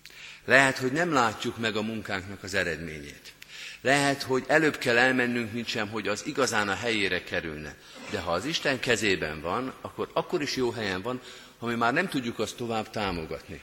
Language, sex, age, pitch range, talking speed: Hungarian, male, 50-69, 95-130 Hz, 185 wpm